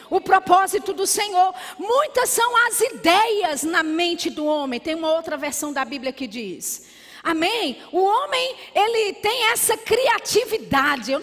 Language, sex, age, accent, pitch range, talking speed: Portuguese, female, 40-59, Brazilian, 295-390 Hz, 155 wpm